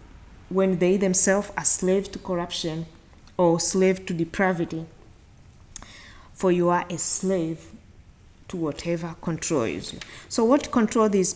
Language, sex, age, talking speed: English, female, 20-39, 125 wpm